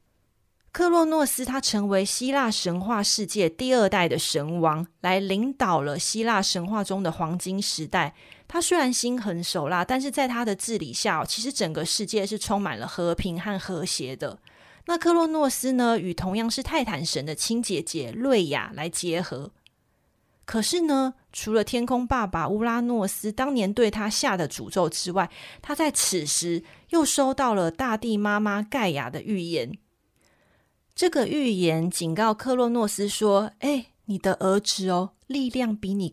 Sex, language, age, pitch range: female, Chinese, 30-49, 180-255 Hz